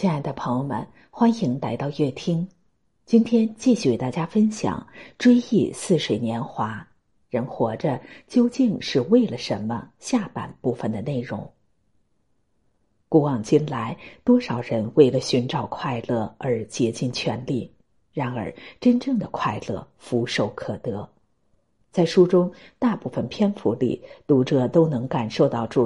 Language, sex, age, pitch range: Chinese, female, 50-69, 120-190 Hz